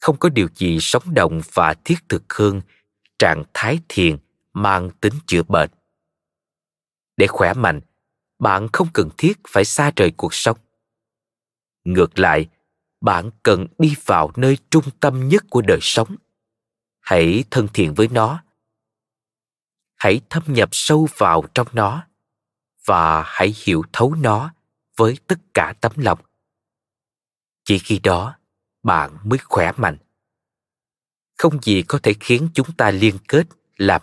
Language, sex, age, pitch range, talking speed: Vietnamese, male, 20-39, 105-145 Hz, 145 wpm